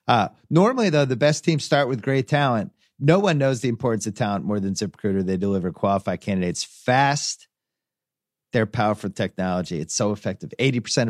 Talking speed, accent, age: 175 wpm, American, 40-59